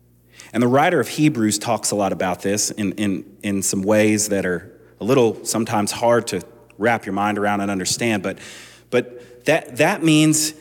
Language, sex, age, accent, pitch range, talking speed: English, male, 30-49, American, 100-135 Hz, 185 wpm